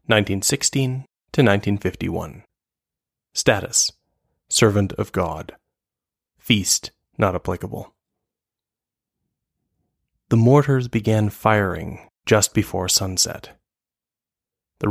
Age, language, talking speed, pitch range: 20-39, English, 70 wpm, 95-115 Hz